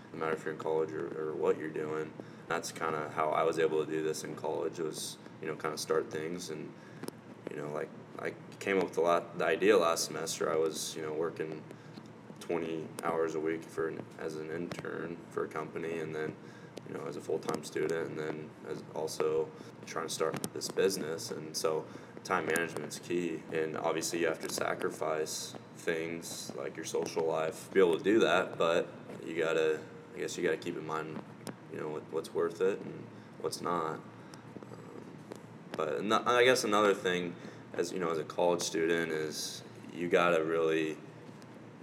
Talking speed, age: 200 wpm, 20-39